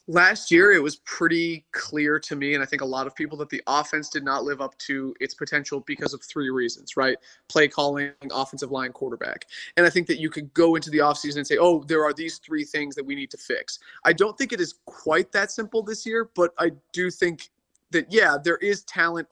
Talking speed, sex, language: 240 wpm, male, English